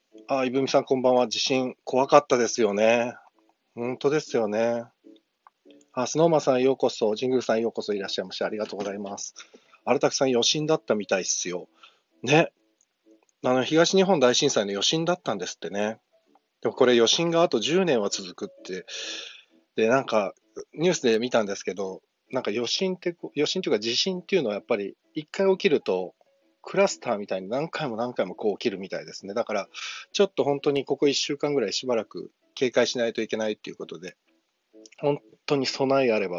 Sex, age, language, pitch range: male, 40-59, Japanese, 120-185 Hz